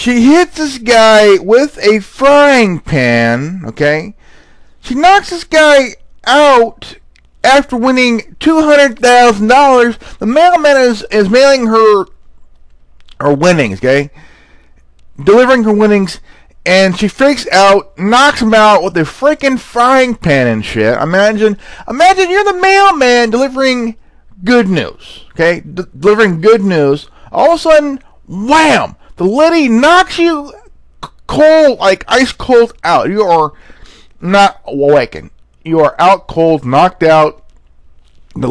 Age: 40-59